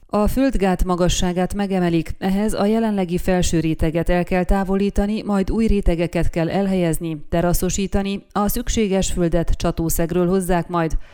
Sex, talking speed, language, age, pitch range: female, 130 wpm, Hungarian, 30-49, 170-200 Hz